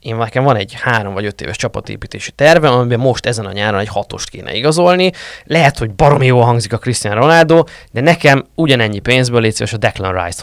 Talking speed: 205 wpm